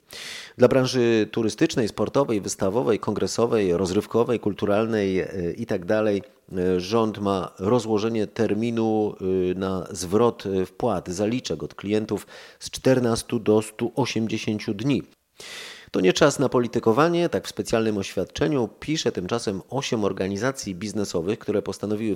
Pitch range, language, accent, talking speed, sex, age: 95-115 Hz, Polish, native, 110 wpm, male, 40-59